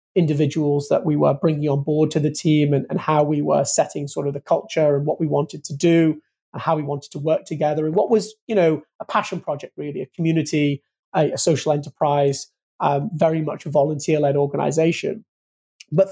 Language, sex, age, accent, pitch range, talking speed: English, male, 30-49, British, 145-165 Hz, 210 wpm